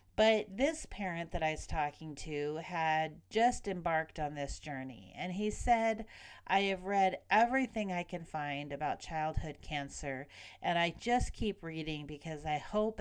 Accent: American